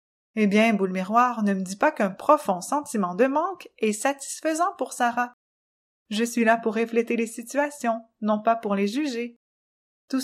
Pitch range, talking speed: 220-280 Hz, 175 wpm